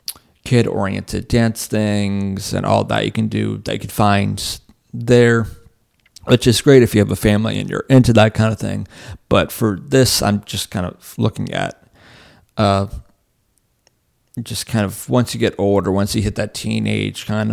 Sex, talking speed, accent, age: male, 180 wpm, American, 30-49